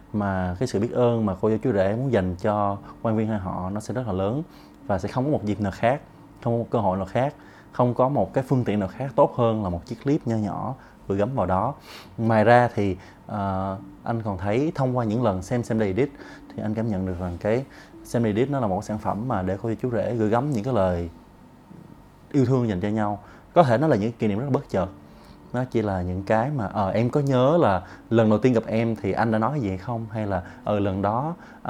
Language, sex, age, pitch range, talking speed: Vietnamese, male, 20-39, 95-125 Hz, 265 wpm